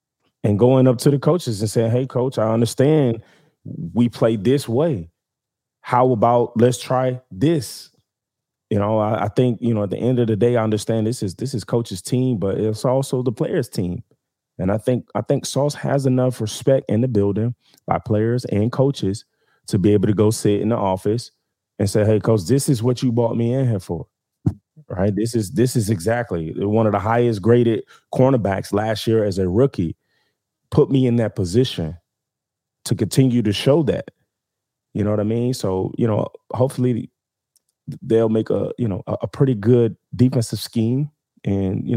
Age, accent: 20-39, American